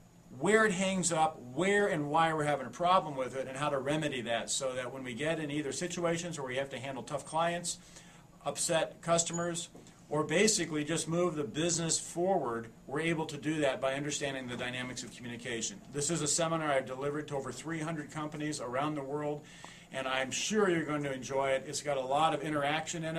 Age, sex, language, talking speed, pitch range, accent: 50-69, male, English, 210 wpm, 145-175 Hz, American